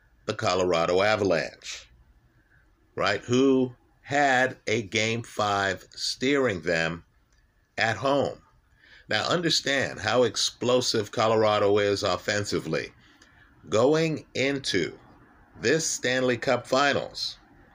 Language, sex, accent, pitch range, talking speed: English, male, American, 100-130 Hz, 90 wpm